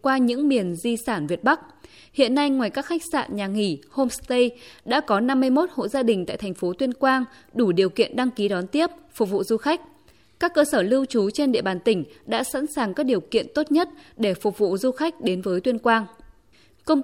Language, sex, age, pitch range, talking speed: Vietnamese, female, 20-39, 210-275 Hz, 230 wpm